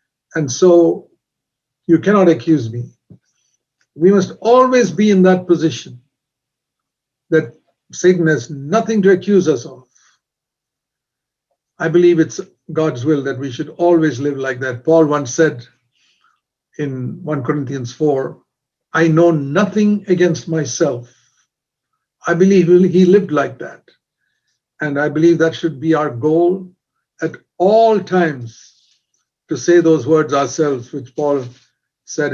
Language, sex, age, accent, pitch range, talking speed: English, male, 60-79, Indian, 140-180 Hz, 130 wpm